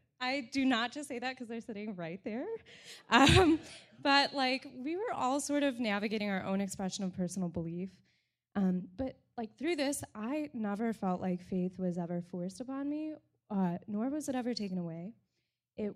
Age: 10-29